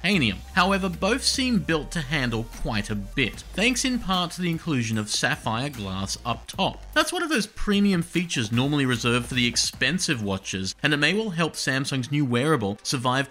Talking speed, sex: 185 wpm, male